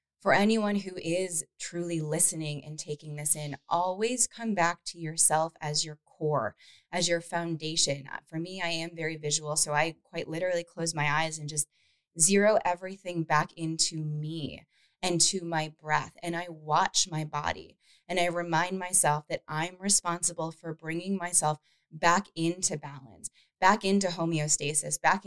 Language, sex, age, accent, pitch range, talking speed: English, female, 20-39, American, 155-185 Hz, 160 wpm